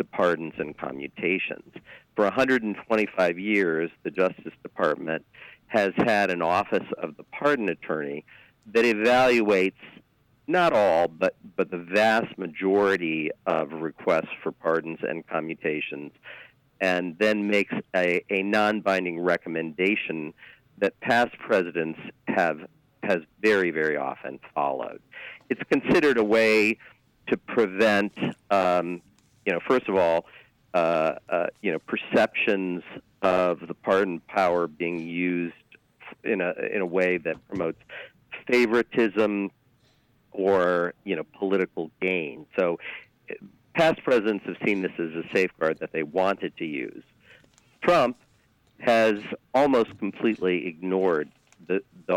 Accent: American